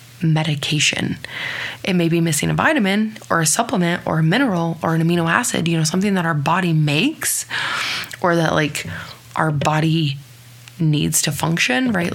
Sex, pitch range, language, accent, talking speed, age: female, 130-170 Hz, English, American, 165 wpm, 20-39